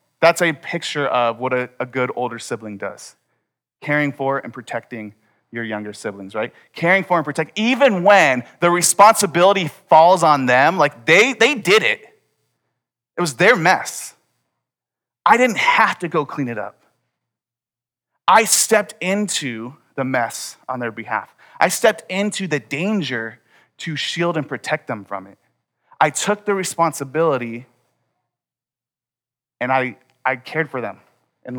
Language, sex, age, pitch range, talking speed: English, male, 30-49, 130-180 Hz, 150 wpm